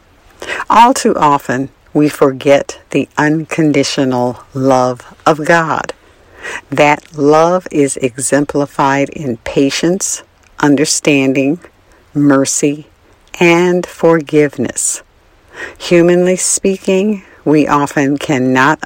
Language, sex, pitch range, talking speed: English, female, 130-165 Hz, 80 wpm